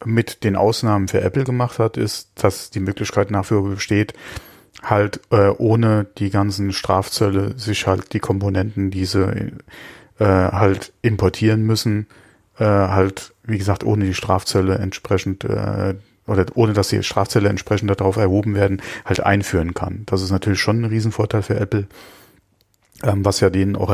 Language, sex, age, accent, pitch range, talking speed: German, male, 30-49, German, 95-110 Hz, 155 wpm